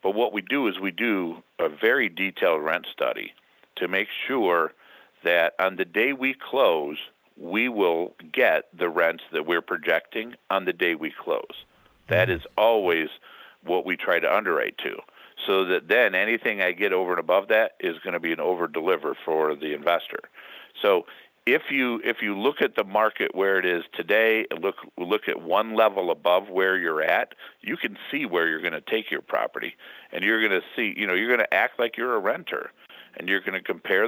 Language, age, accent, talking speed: English, 50-69, American, 200 wpm